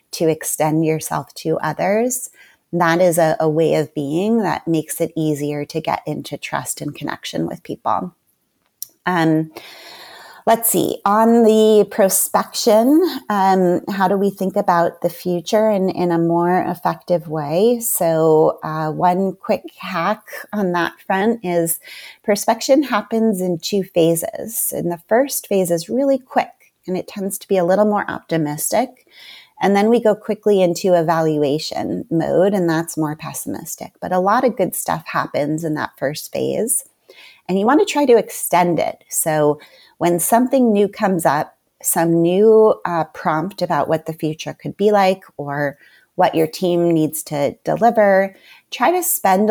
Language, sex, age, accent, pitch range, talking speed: English, female, 30-49, American, 160-210 Hz, 160 wpm